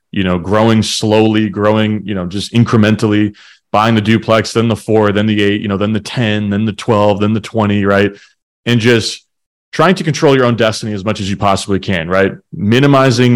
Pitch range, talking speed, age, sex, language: 100-120 Hz, 205 wpm, 30-49, male, English